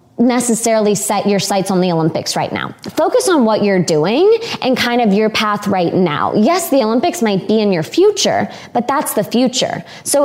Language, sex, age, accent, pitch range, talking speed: English, female, 20-39, American, 190-230 Hz, 200 wpm